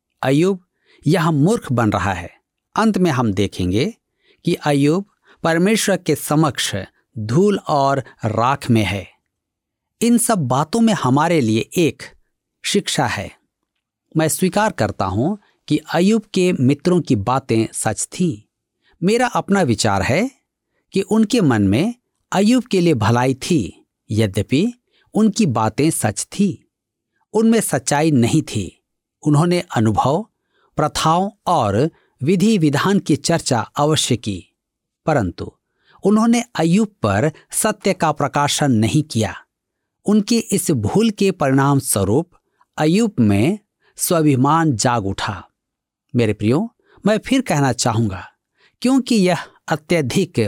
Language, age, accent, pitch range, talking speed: Hindi, 50-69, native, 115-195 Hz, 120 wpm